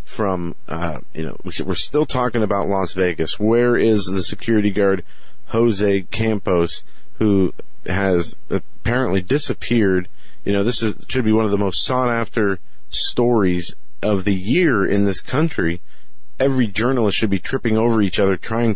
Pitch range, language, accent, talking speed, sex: 95-110 Hz, English, American, 155 wpm, male